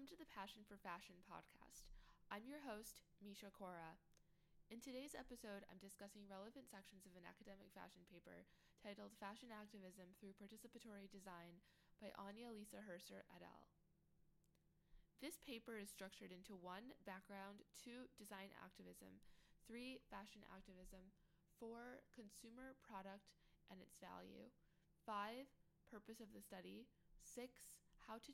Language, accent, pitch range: English, American, 175-220 Hz